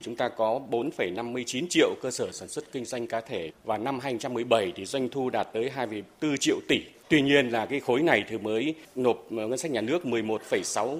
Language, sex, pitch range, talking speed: Vietnamese, male, 125-195 Hz, 205 wpm